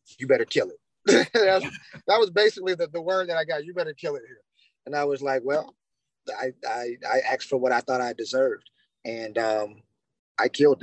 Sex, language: male, English